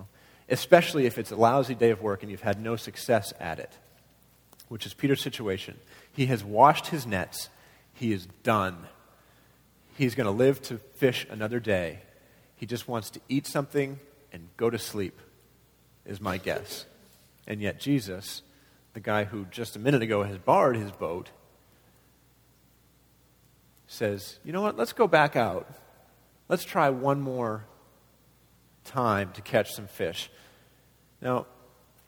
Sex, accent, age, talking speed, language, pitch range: male, American, 40-59, 150 wpm, English, 100-145 Hz